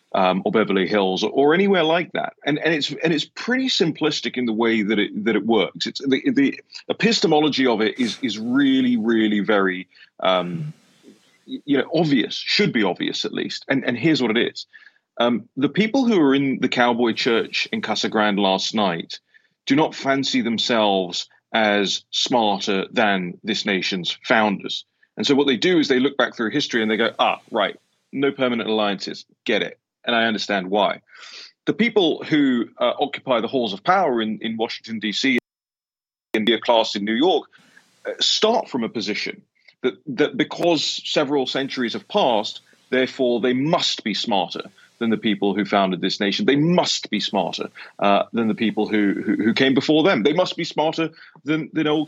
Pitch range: 105-155 Hz